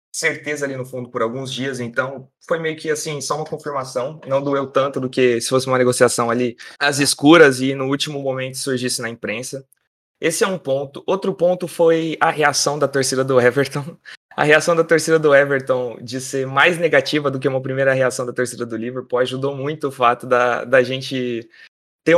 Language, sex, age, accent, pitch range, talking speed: Portuguese, male, 20-39, Brazilian, 125-155 Hz, 205 wpm